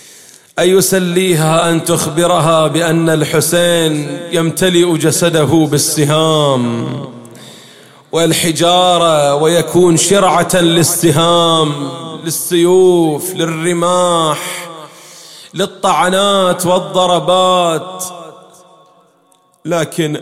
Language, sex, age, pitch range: English, male, 30-49, 145-175 Hz